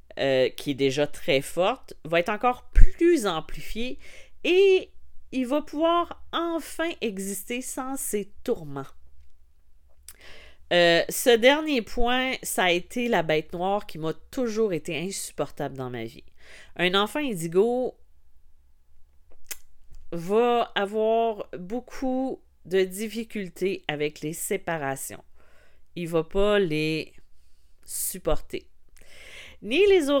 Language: French